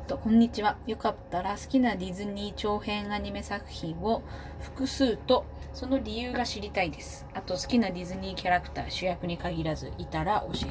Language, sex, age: Japanese, female, 20-39